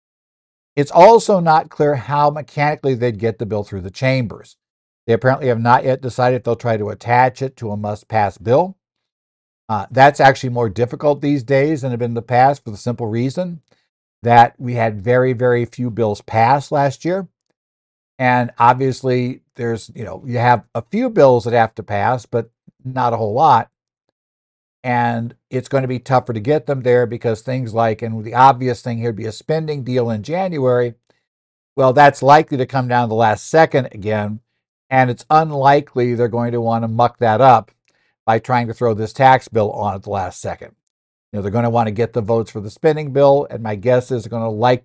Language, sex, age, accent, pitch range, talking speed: English, male, 60-79, American, 115-130 Hz, 210 wpm